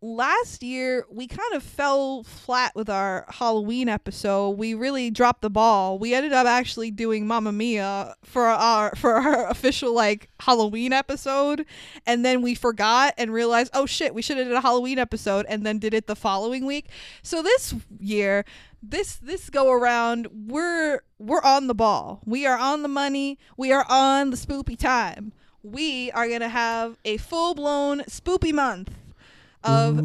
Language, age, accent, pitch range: English, 20-39, American, 215-275 Hz